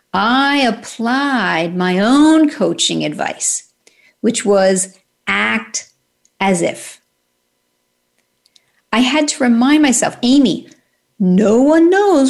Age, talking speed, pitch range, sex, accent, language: 50-69, 100 wpm, 165-245 Hz, female, American, English